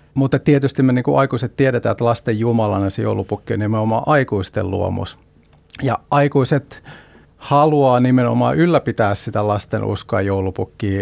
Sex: male